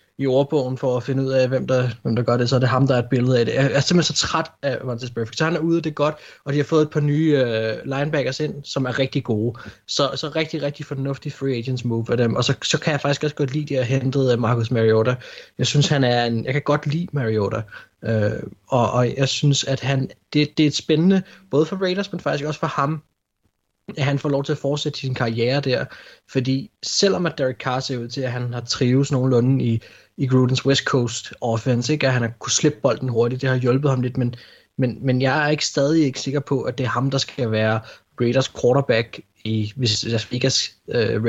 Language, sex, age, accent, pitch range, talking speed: Danish, male, 20-39, native, 120-145 Hz, 245 wpm